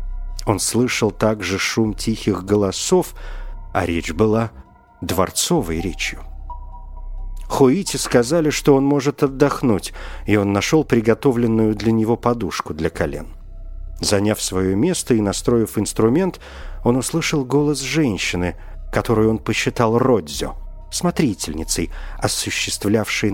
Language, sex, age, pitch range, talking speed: Russian, male, 50-69, 90-125 Hz, 110 wpm